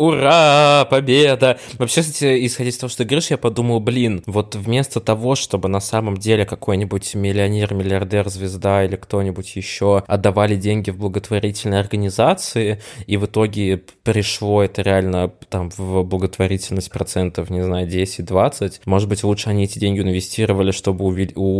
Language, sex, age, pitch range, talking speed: Russian, male, 20-39, 95-105 Hz, 155 wpm